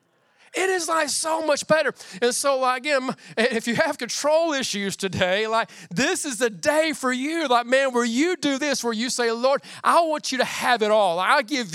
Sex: male